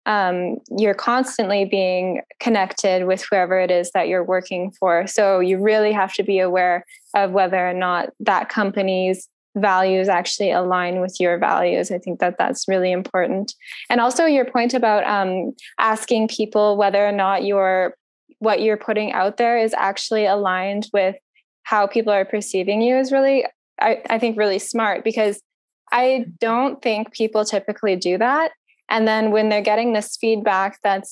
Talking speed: 170 wpm